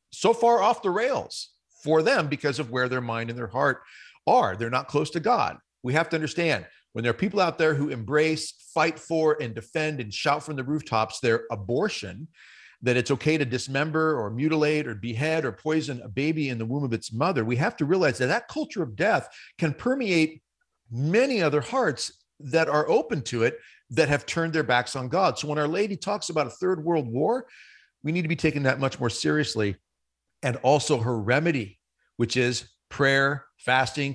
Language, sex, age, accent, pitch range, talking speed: English, male, 40-59, American, 120-160 Hz, 205 wpm